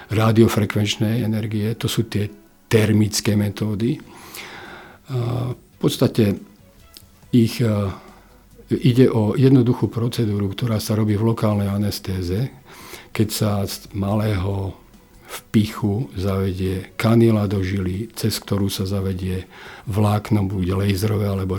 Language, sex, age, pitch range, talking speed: Slovak, male, 50-69, 100-115 Hz, 105 wpm